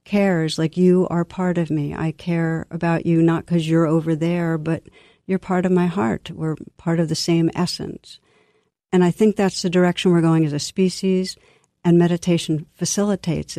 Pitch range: 155-170 Hz